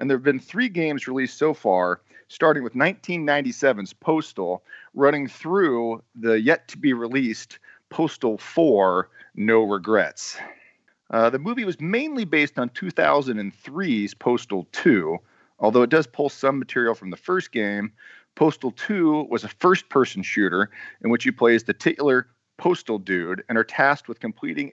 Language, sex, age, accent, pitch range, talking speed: English, male, 40-59, American, 105-160 Hz, 150 wpm